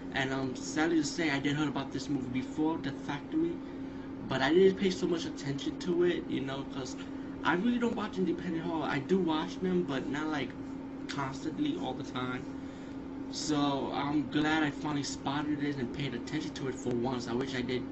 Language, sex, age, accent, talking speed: English, male, 20-39, American, 205 wpm